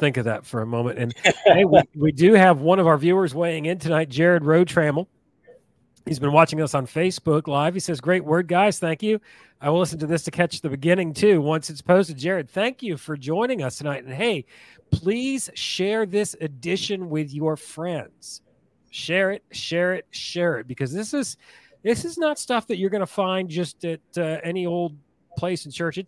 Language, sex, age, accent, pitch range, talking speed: English, male, 40-59, American, 125-175 Hz, 210 wpm